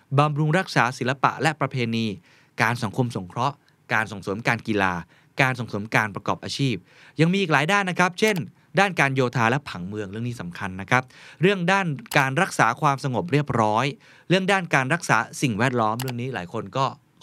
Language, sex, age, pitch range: Thai, male, 20-39, 115-155 Hz